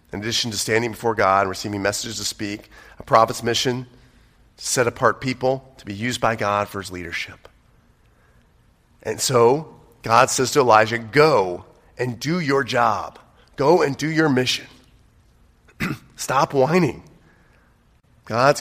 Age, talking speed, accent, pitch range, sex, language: 30-49, 145 wpm, American, 110-135 Hz, male, English